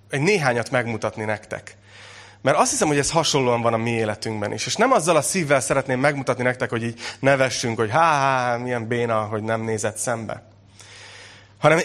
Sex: male